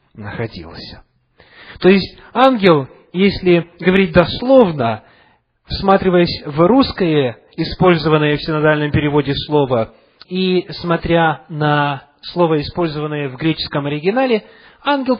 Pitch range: 105-180 Hz